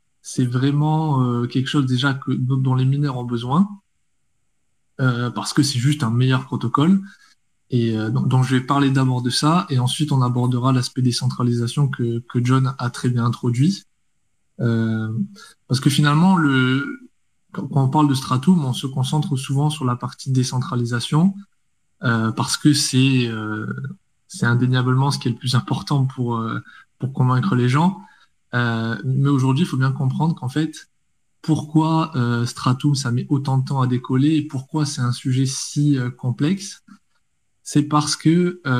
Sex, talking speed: male, 150 wpm